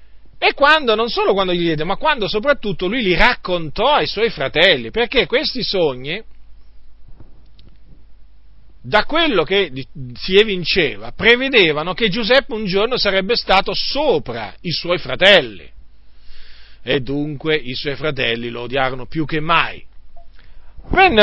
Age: 40-59